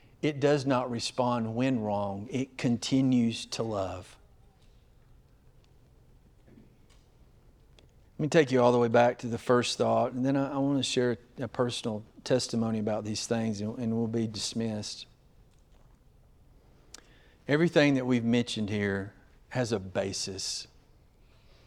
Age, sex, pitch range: 50-69, male, 105-130 Hz